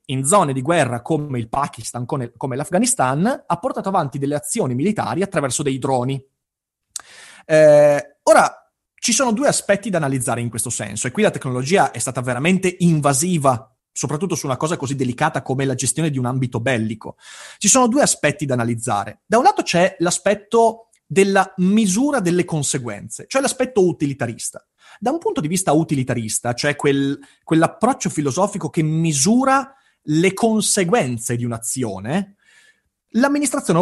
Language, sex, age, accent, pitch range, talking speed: Italian, male, 30-49, native, 130-200 Hz, 150 wpm